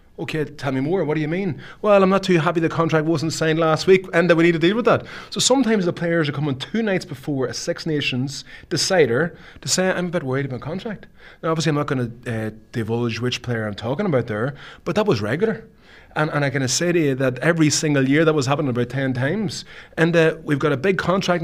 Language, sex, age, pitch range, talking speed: English, male, 30-49, 120-170 Hz, 250 wpm